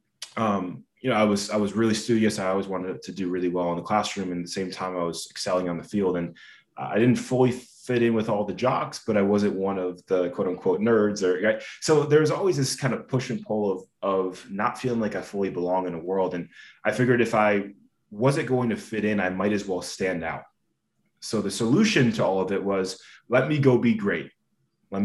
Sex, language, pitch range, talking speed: male, English, 90-105 Hz, 240 wpm